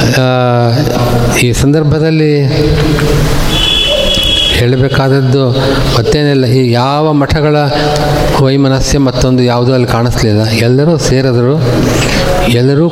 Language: Kannada